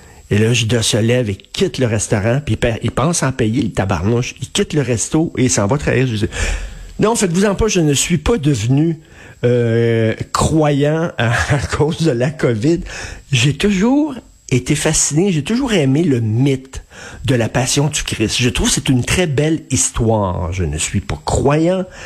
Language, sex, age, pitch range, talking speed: French, male, 50-69, 115-140 Hz, 195 wpm